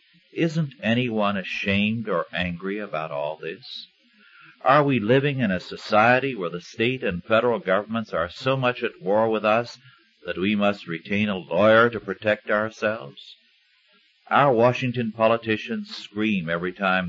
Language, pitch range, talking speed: English, 95-130 Hz, 150 wpm